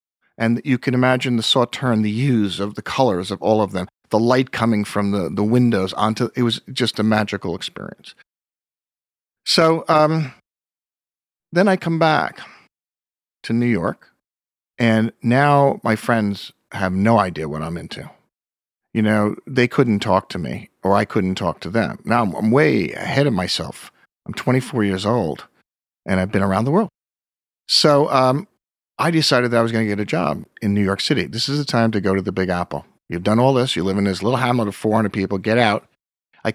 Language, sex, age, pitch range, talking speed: English, male, 40-59, 100-130 Hz, 195 wpm